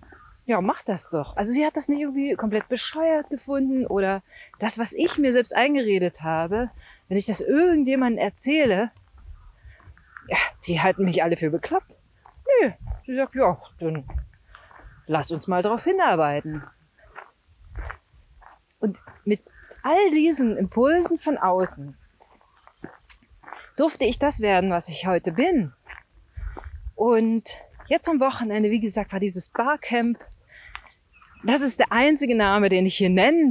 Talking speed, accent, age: 135 wpm, German, 40-59